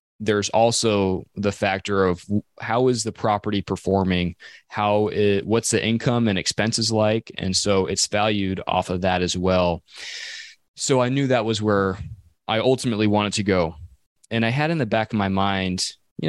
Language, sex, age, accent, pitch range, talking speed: English, male, 20-39, American, 95-110 Hz, 175 wpm